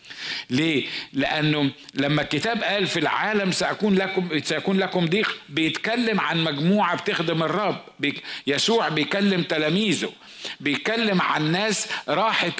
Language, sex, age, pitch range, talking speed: Arabic, male, 50-69, 160-200 Hz, 120 wpm